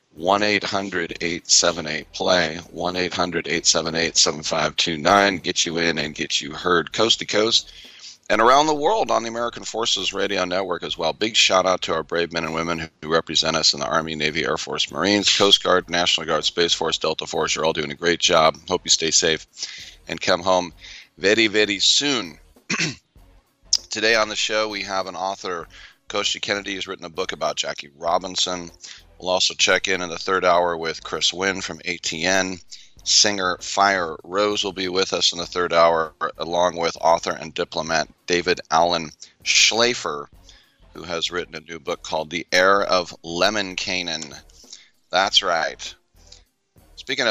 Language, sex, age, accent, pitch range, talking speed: English, male, 40-59, American, 85-100 Hz, 165 wpm